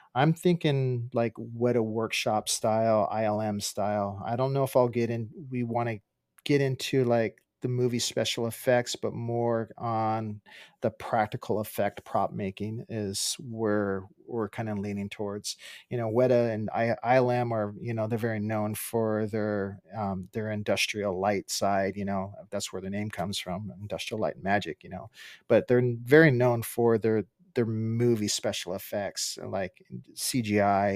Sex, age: male, 40-59